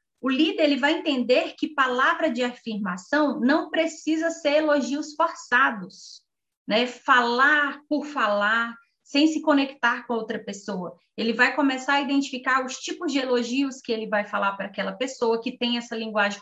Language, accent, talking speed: Portuguese, Brazilian, 160 wpm